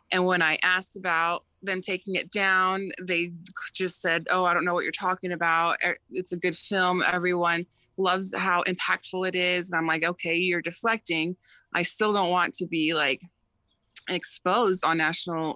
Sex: female